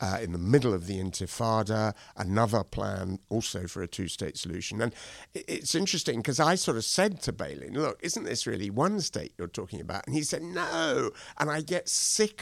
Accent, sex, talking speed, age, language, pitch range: British, male, 205 wpm, 60-79, English, 95-125 Hz